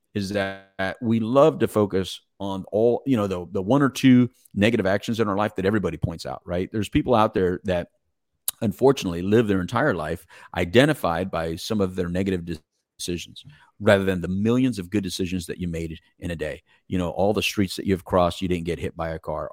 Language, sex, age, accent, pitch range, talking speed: English, male, 40-59, American, 85-105 Hz, 215 wpm